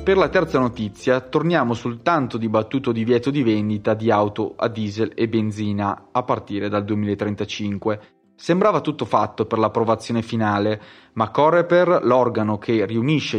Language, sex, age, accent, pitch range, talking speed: Italian, male, 30-49, native, 105-125 Hz, 150 wpm